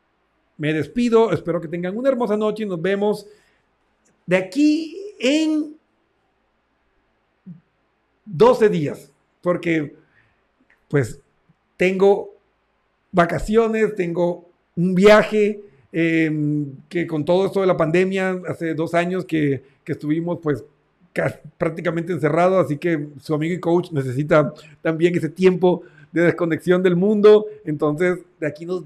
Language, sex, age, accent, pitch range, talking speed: Spanish, male, 50-69, Mexican, 160-190 Hz, 120 wpm